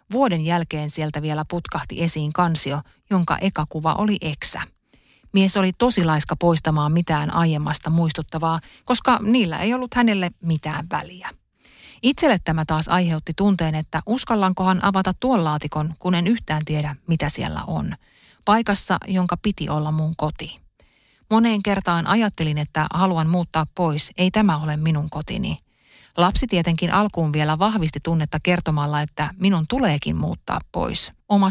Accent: native